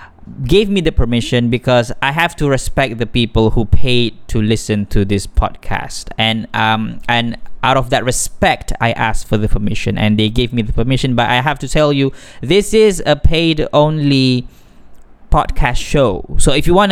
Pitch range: 120-155 Hz